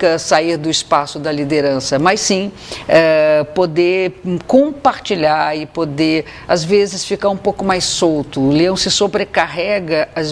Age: 50-69